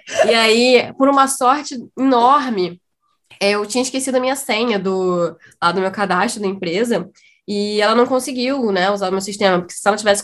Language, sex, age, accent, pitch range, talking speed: Portuguese, female, 10-29, Brazilian, 185-230 Hz, 190 wpm